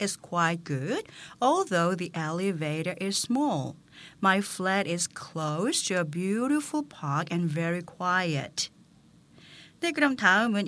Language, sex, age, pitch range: Korean, female, 40-59, 160-210 Hz